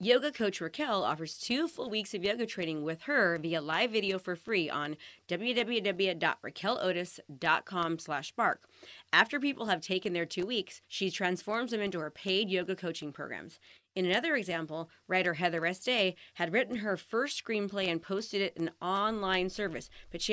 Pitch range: 170-220 Hz